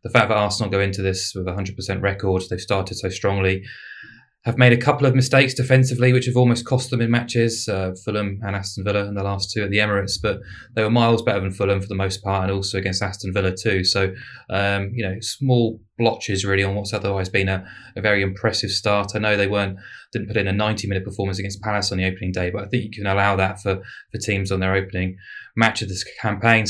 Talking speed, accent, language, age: 240 wpm, British, English, 20-39